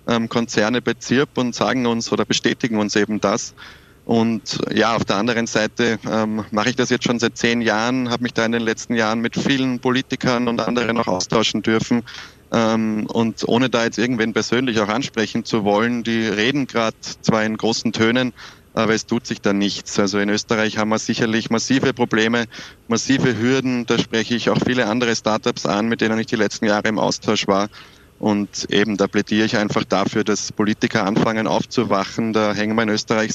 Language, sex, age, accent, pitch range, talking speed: German, male, 20-39, Austrian, 110-120 Hz, 195 wpm